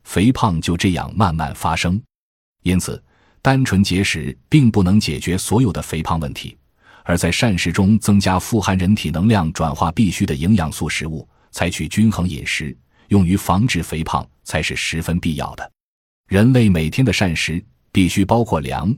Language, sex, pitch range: Chinese, male, 80-110 Hz